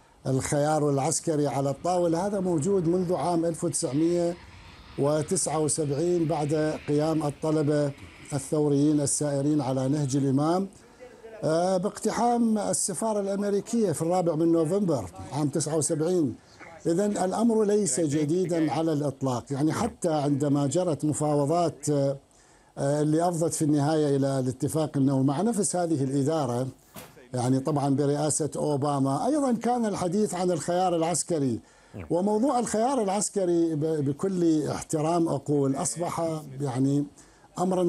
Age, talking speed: 50-69, 105 wpm